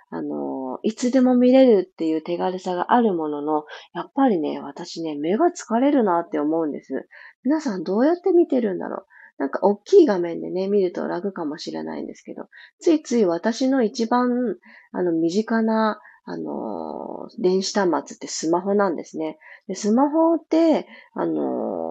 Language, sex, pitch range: Japanese, female, 165-250 Hz